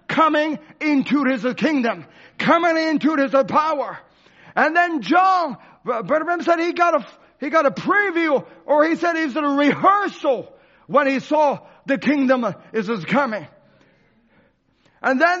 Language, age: English, 40-59